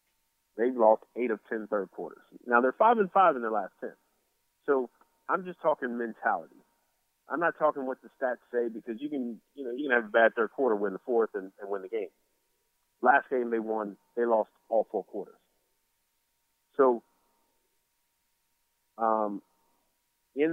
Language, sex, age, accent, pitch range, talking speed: English, male, 40-59, American, 110-140 Hz, 175 wpm